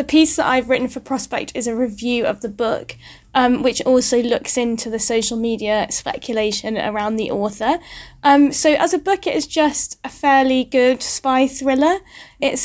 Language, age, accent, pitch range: English, 10-29, British, 230-270 Hz